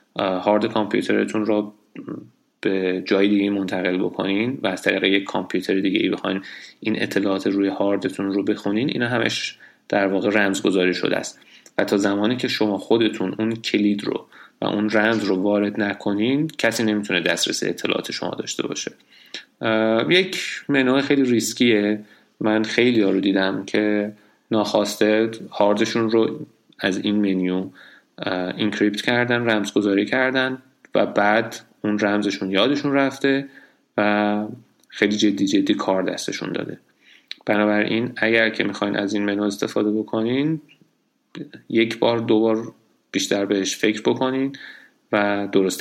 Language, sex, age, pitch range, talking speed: Persian, male, 30-49, 100-115 Hz, 130 wpm